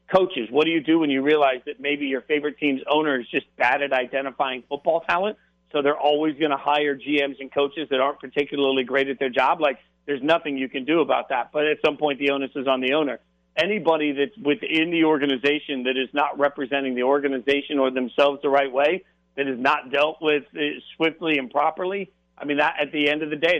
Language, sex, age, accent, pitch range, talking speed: English, male, 50-69, American, 135-150 Hz, 225 wpm